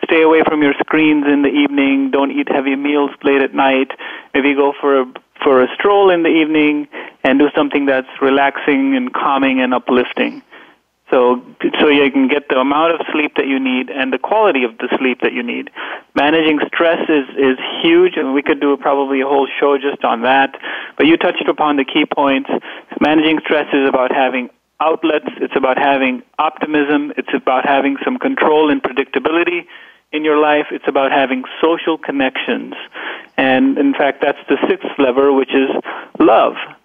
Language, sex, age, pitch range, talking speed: English, male, 30-49, 135-160 Hz, 180 wpm